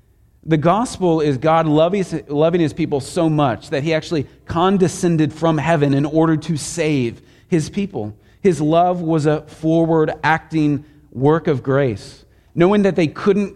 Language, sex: English, male